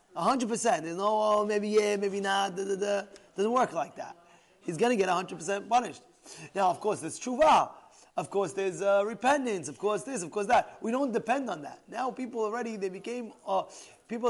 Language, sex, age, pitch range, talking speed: English, male, 30-49, 190-255 Hz, 205 wpm